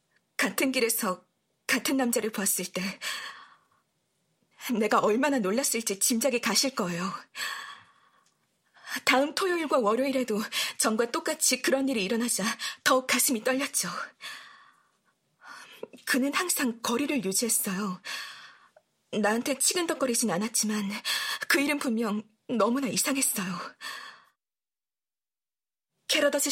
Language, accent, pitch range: Korean, native, 205-275 Hz